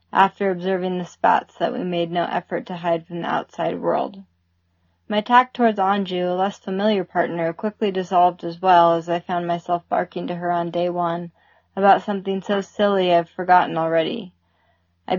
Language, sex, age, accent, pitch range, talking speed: English, female, 20-39, American, 175-205 Hz, 180 wpm